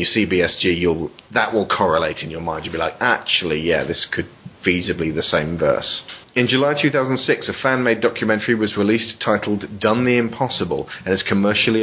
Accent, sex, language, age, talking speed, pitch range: British, male, English, 30-49, 185 wpm, 100-125 Hz